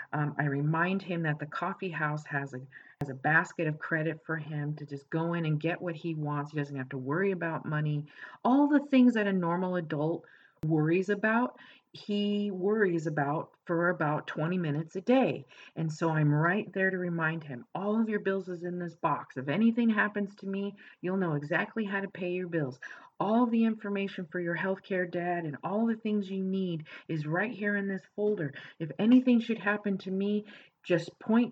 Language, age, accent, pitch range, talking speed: English, 40-59, American, 155-200 Hz, 200 wpm